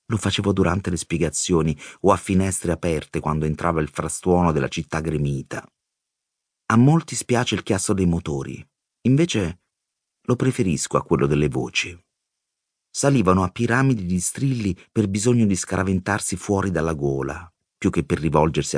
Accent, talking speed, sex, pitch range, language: native, 145 wpm, male, 85-105 Hz, Italian